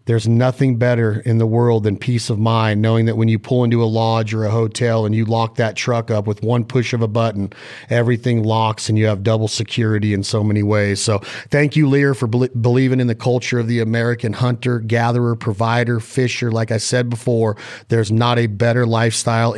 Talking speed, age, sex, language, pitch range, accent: 210 wpm, 40-59, male, English, 110-135 Hz, American